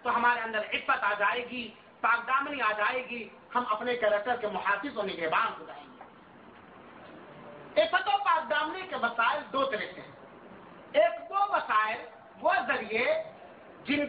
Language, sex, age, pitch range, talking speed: Urdu, male, 50-69, 240-330 Hz, 50 wpm